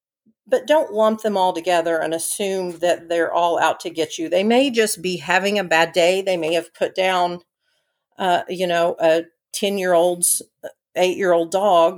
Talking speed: 185 wpm